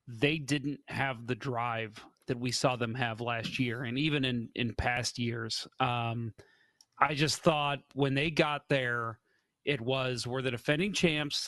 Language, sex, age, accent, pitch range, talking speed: English, male, 30-49, American, 125-145 Hz, 165 wpm